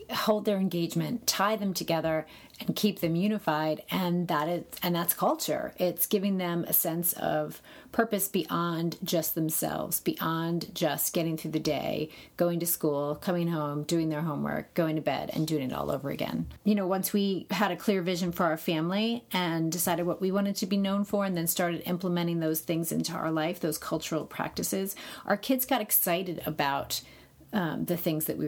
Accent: American